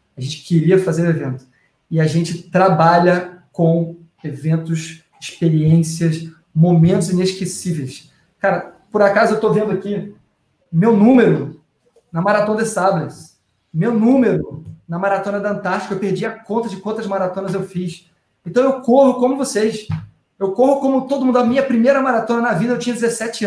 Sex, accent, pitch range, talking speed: male, Brazilian, 160-200 Hz, 160 wpm